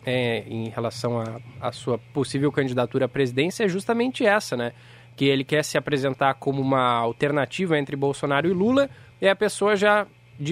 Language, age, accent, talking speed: Portuguese, 20-39, Brazilian, 170 wpm